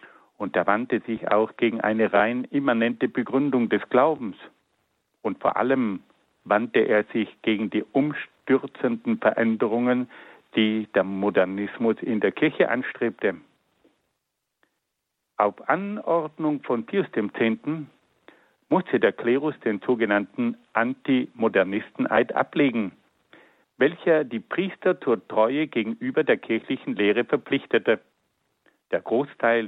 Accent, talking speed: German, 110 wpm